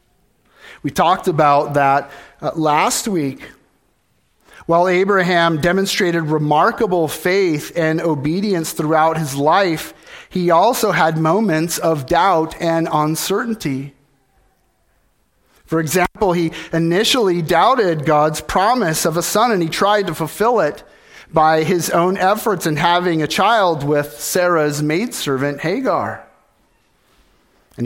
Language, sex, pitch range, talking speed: English, male, 130-170 Hz, 115 wpm